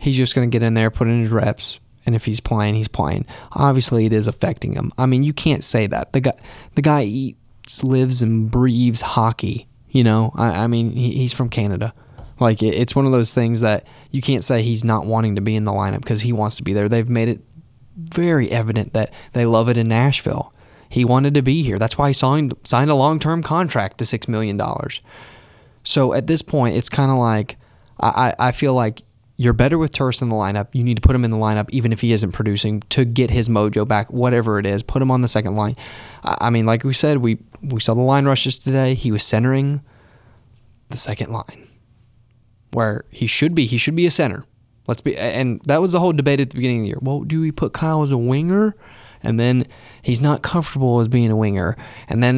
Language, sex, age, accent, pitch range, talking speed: English, male, 20-39, American, 110-135 Hz, 230 wpm